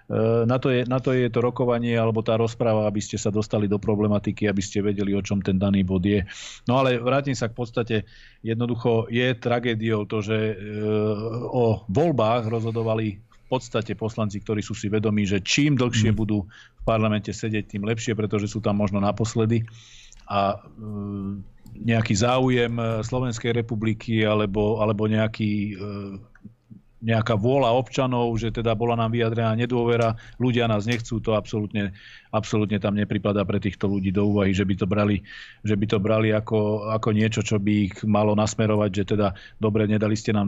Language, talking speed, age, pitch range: Slovak, 165 wpm, 40-59, 105-115 Hz